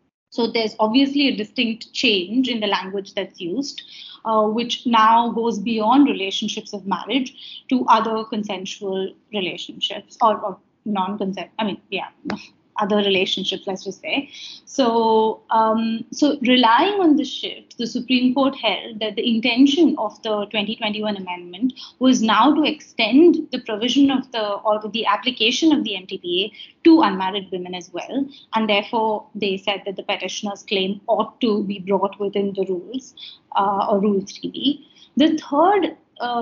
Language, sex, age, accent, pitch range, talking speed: English, female, 30-49, Indian, 205-270 Hz, 155 wpm